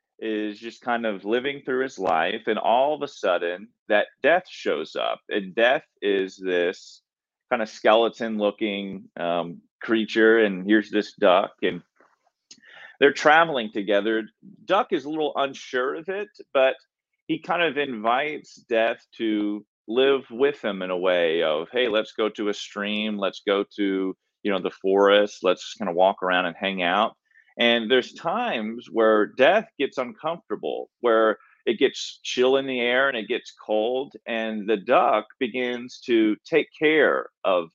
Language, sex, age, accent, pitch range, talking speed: English, male, 30-49, American, 105-130 Hz, 165 wpm